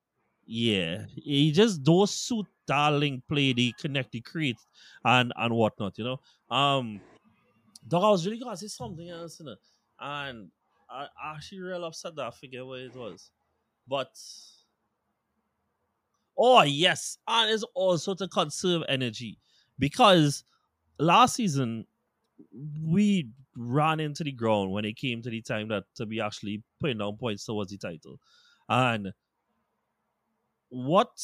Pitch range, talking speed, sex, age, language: 115-160 Hz, 140 wpm, male, 20-39, English